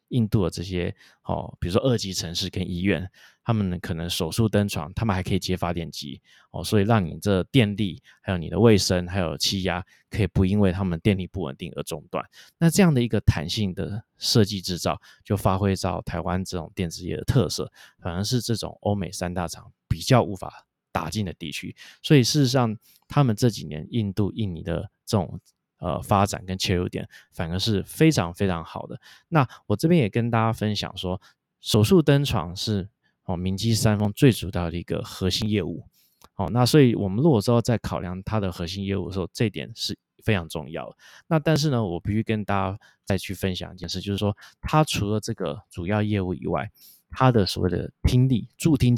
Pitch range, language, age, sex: 90-115 Hz, Chinese, 20-39, male